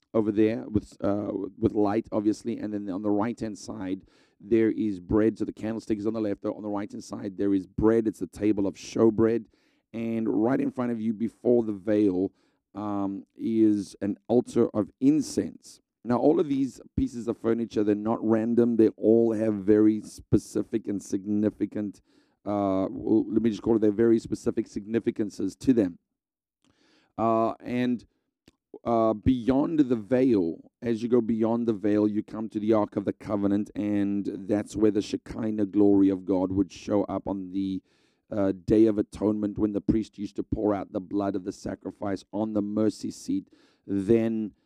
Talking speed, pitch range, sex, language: 180 wpm, 100-115 Hz, male, English